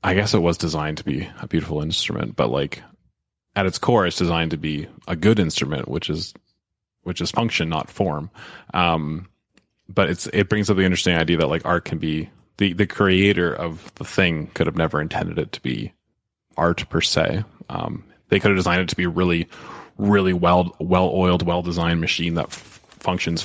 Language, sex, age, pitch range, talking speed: English, male, 20-39, 85-100 Hz, 200 wpm